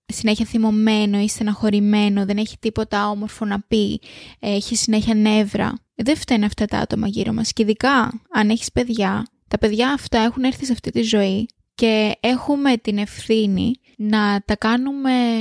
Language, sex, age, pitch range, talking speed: Greek, female, 20-39, 210-240 Hz, 160 wpm